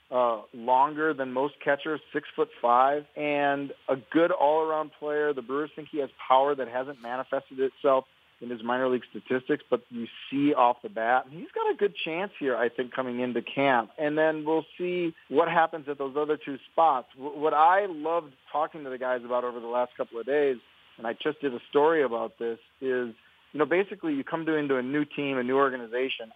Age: 40-59